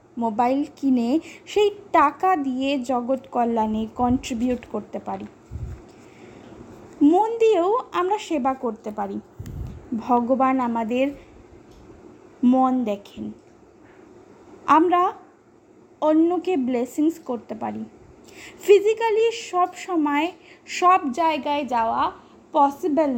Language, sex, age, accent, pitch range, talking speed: Bengali, female, 20-39, native, 255-365 Hz, 85 wpm